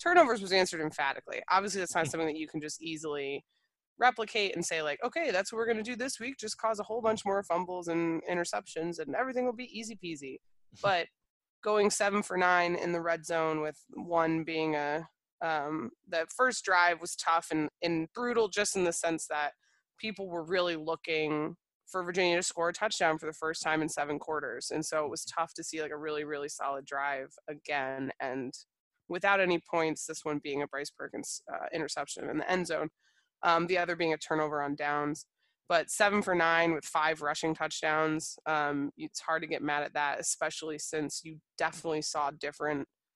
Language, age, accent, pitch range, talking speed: English, 20-39, American, 155-190 Hz, 200 wpm